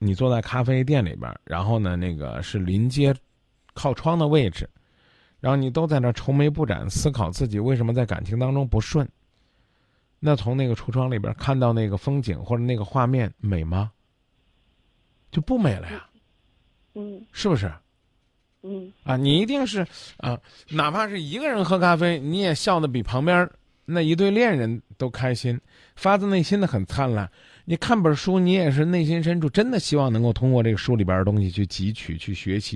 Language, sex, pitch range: Chinese, male, 115-160 Hz